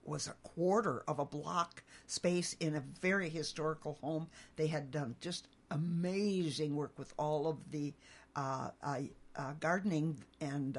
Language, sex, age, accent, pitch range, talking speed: English, female, 60-79, American, 150-185 Hz, 150 wpm